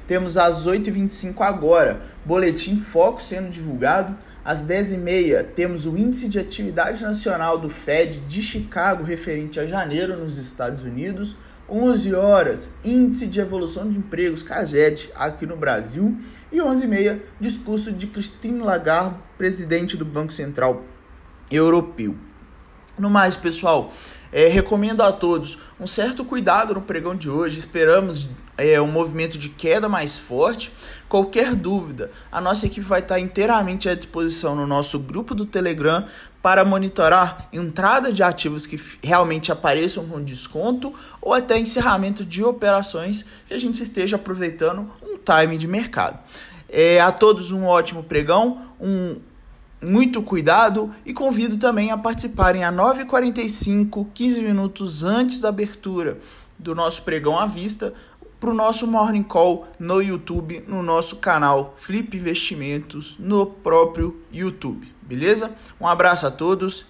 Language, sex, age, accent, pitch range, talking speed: Portuguese, male, 20-39, Brazilian, 165-215 Hz, 135 wpm